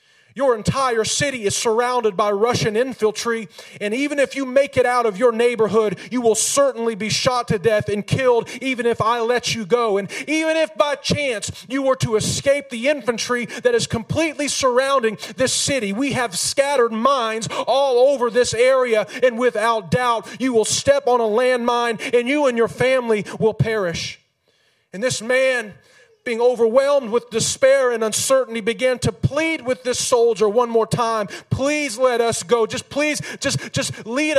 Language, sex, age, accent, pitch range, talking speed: English, male, 40-59, American, 220-265 Hz, 175 wpm